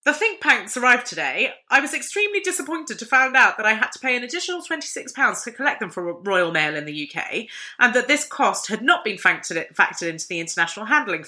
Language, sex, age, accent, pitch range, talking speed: English, female, 20-39, British, 210-320 Hz, 215 wpm